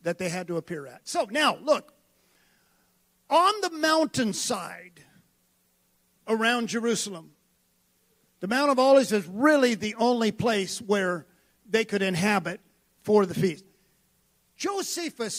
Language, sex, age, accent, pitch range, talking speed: English, male, 50-69, American, 160-225 Hz, 120 wpm